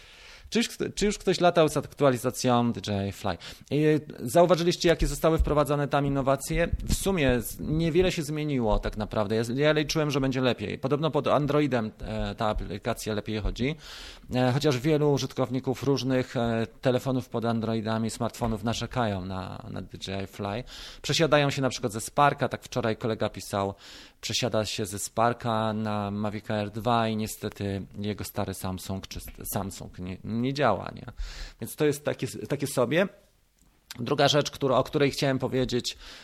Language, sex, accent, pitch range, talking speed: Polish, male, native, 110-140 Hz, 160 wpm